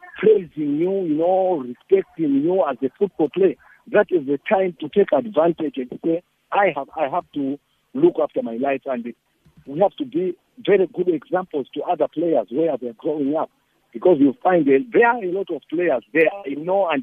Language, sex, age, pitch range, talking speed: English, male, 50-69, 140-205 Hz, 205 wpm